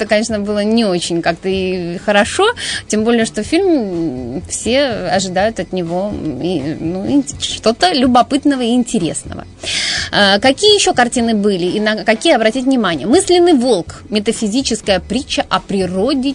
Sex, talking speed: female, 145 wpm